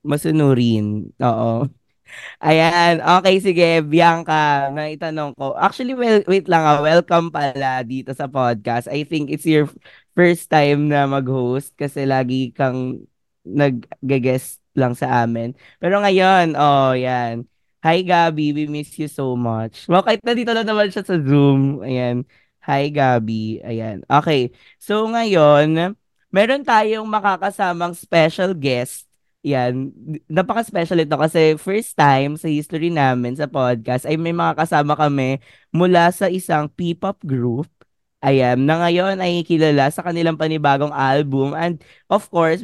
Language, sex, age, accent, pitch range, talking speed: English, female, 20-39, Filipino, 135-175 Hz, 135 wpm